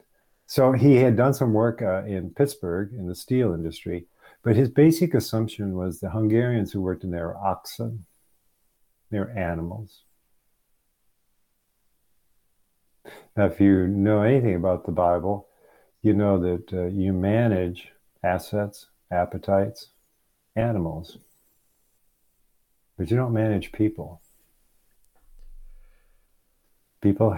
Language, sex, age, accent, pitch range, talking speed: English, male, 50-69, American, 90-110 Hz, 110 wpm